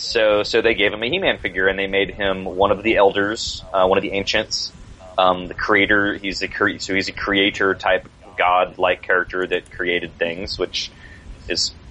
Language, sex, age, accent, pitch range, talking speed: English, male, 20-39, American, 85-105 Hz, 195 wpm